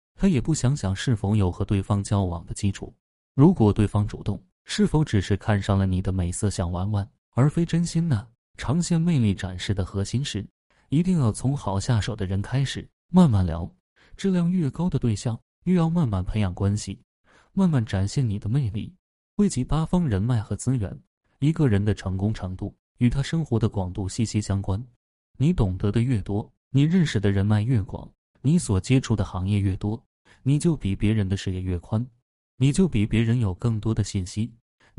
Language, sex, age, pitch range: Chinese, male, 20-39, 100-130 Hz